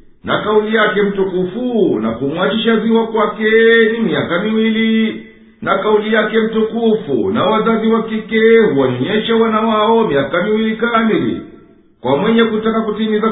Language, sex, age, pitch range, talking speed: Swahili, male, 50-69, 205-225 Hz, 120 wpm